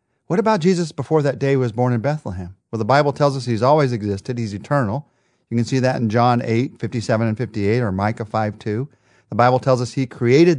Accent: American